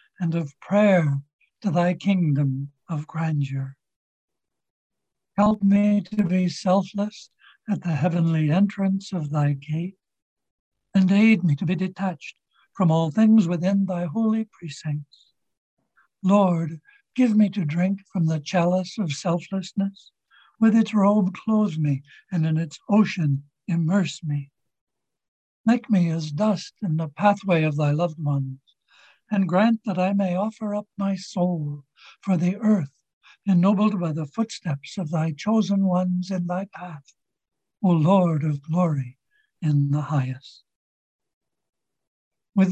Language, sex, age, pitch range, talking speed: English, male, 60-79, 155-205 Hz, 135 wpm